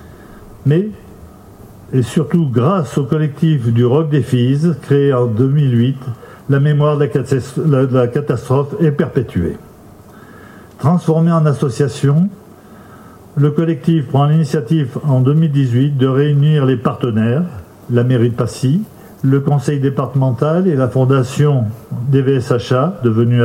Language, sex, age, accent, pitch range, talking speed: French, male, 50-69, French, 125-160 Hz, 115 wpm